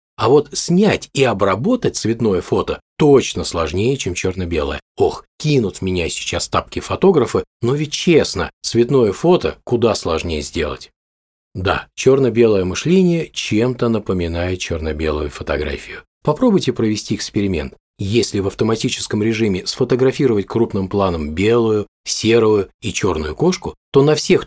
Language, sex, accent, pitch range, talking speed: Russian, male, native, 95-145 Hz, 125 wpm